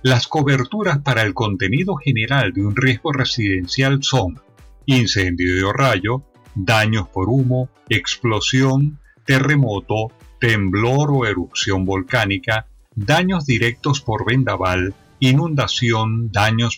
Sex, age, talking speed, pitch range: male, 40-59, 105 wpm, 105-140 Hz